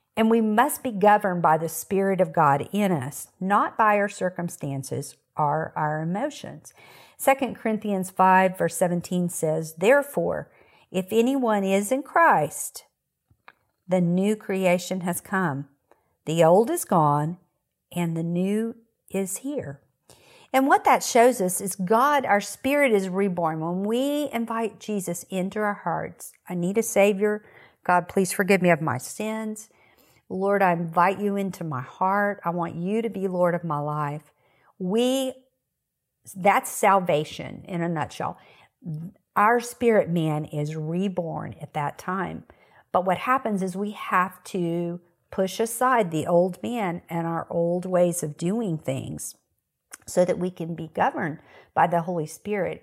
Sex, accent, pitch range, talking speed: female, American, 165-210 Hz, 150 wpm